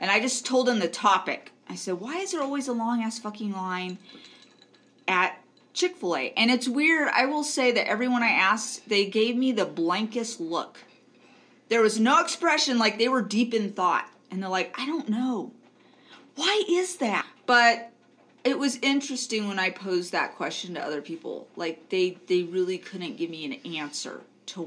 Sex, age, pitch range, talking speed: female, 30-49, 190-250 Hz, 185 wpm